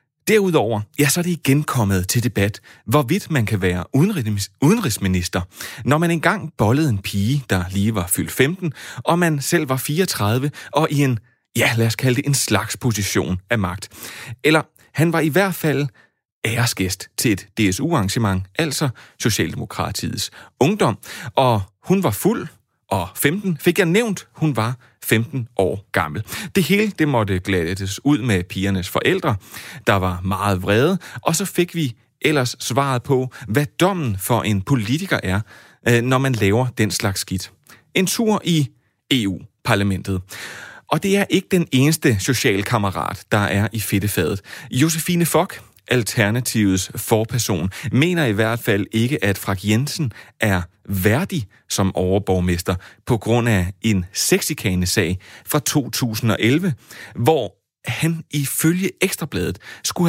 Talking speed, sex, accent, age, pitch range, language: 145 wpm, male, native, 30-49, 100-150 Hz, Danish